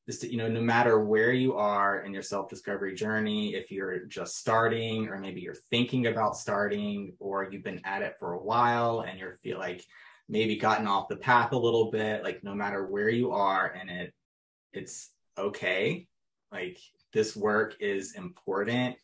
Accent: American